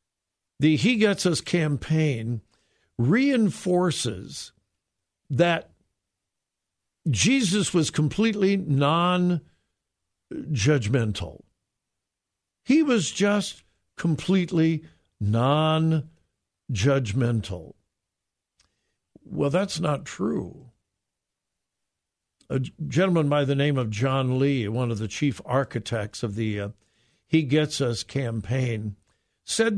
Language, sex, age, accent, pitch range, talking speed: English, male, 60-79, American, 110-185 Hz, 85 wpm